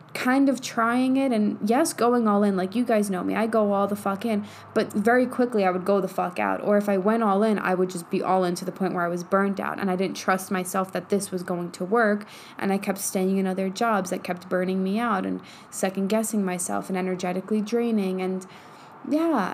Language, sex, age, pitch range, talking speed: English, female, 10-29, 195-240 Hz, 245 wpm